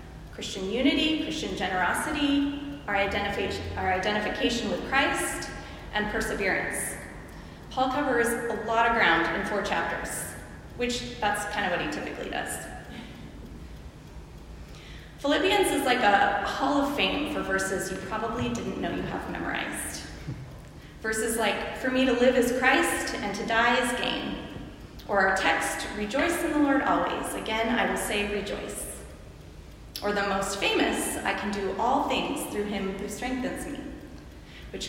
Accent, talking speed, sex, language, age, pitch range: American, 145 wpm, female, English, 30-49, 205-285 Hz